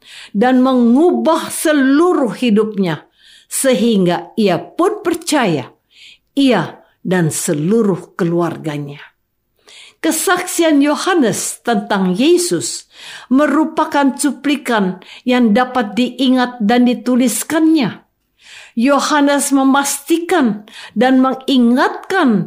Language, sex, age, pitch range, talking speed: Indonesian, female, 50-69, 200-285 Hz, 70 wpm